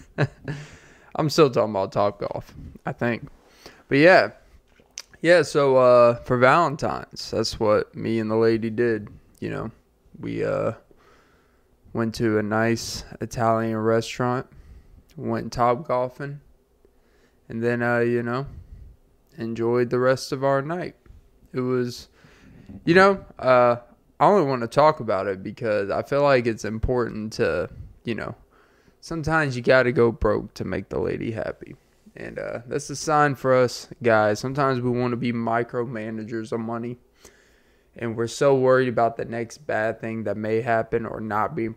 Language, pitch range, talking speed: English, 115-130 Hz, 155 wpm